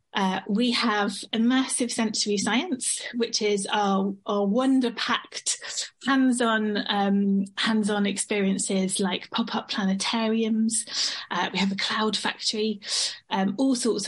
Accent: British